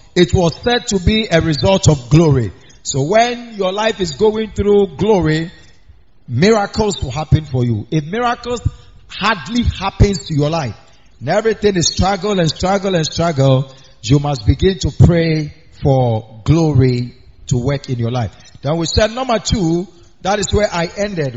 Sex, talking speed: male, 165 wpm